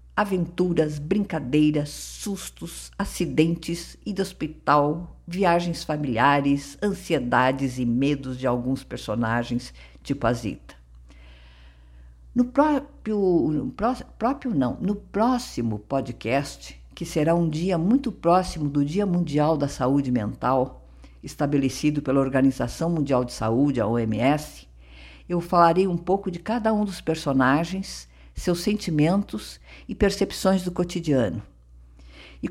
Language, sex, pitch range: Portuguese, female, 120-175 Hz